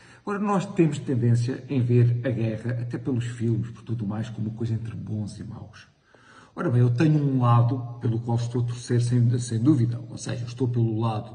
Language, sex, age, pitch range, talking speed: Portuguese, male, 50-69, 110-120 Hz, 210 wpm